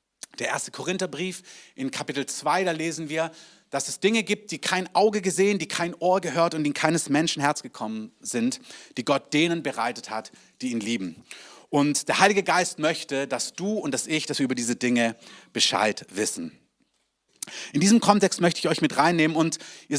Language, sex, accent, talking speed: German, male, German, 190 wpm